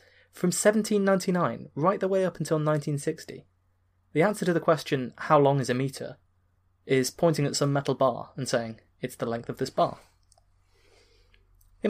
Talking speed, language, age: 165 wpm, English, 20-39